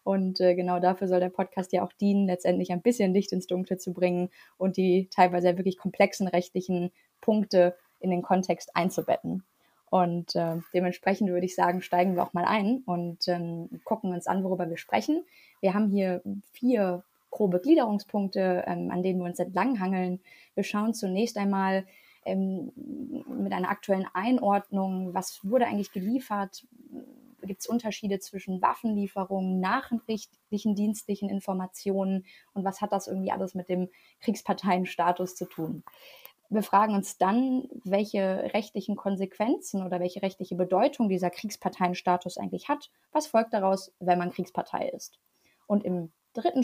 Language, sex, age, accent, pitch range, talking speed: German, female, 20-39, German, 180-215 Hz, 150 wpm